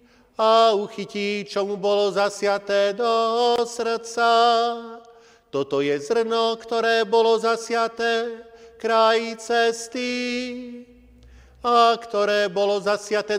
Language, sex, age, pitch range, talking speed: Slovak, male, 40-59, 210-230 Hz, 90 wpm